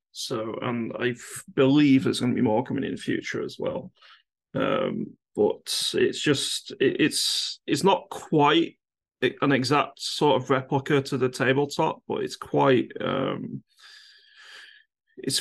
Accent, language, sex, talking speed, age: British, English, male, 140 wpm, 30-49